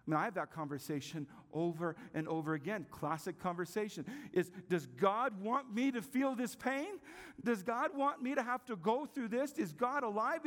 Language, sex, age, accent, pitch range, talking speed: English, male, 50-69, American, 175-245 Hz, 185 wpm